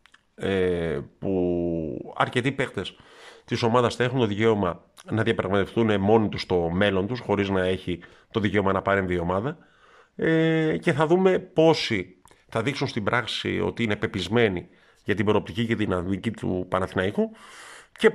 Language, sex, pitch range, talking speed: Greek, male, 100-125 Hz, 150 wpm